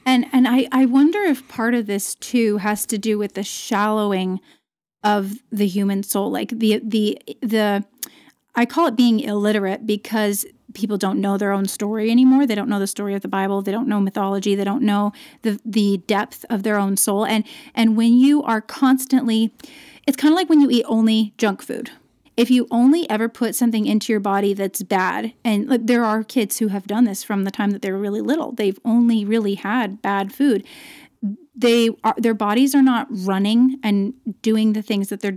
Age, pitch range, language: 30-49, 200-245 Hz, English